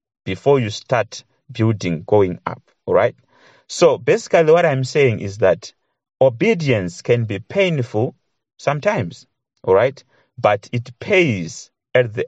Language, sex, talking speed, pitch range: English, male, 130 wpm, 105-140 Hz